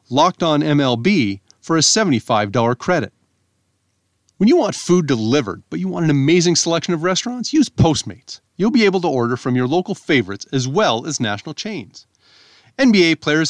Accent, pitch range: American, 105-150 Hz